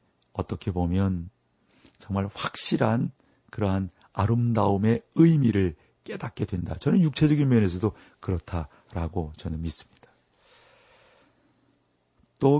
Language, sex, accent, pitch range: Korean, male, native, 90-115 Hz